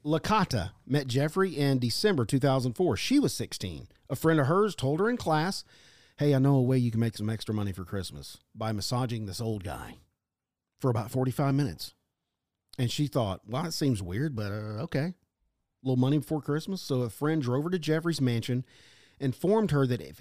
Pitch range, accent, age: 105-140 Hz, American, 40-59